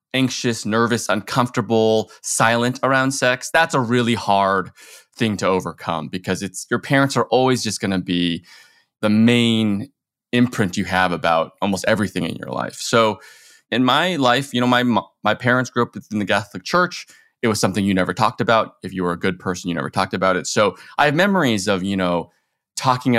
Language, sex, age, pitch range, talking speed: English, male, 20-39, 95-125 Hz, 190 wpm